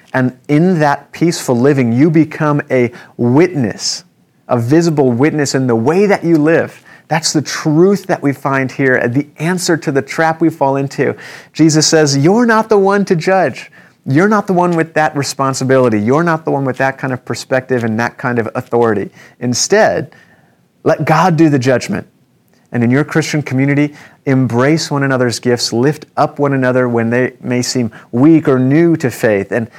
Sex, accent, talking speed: male, American, 185 wpm